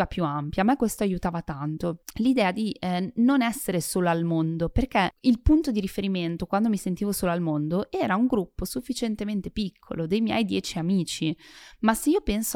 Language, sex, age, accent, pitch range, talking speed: Italian, female, 20-39, native, 175-230 Hz, 180 wpm